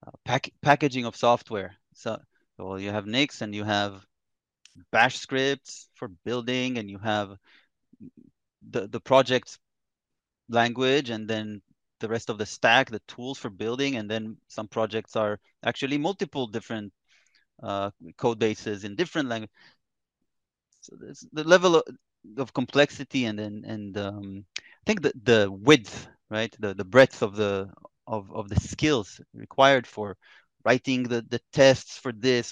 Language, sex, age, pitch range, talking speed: English, male, 30-49, 105-135 Hz, 155 wpm